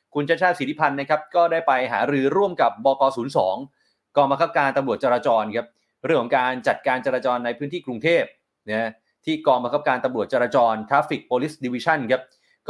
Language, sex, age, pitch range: Thai, male, 20-39, 120-150 Hz